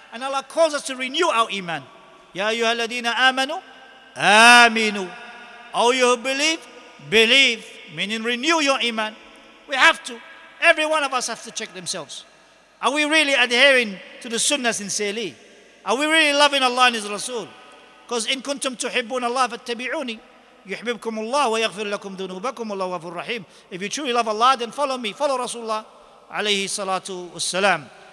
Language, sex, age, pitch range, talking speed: English, male, 50-69, 205-255 Hz, 150 wpm